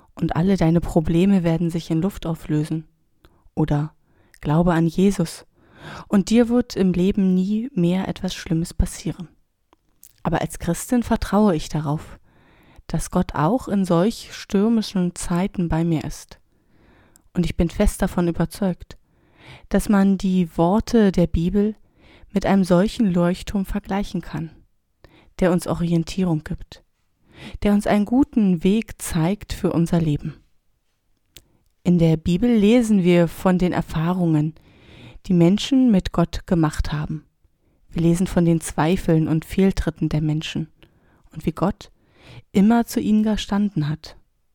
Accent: German